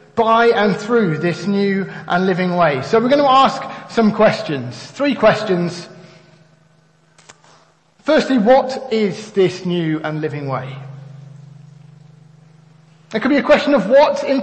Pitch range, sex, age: 165-250 Hz, male, 40-59